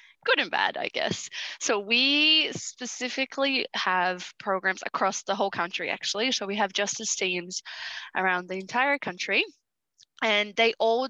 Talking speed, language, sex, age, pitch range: 145 wpm, English, female, 10-29, 185-240 Hz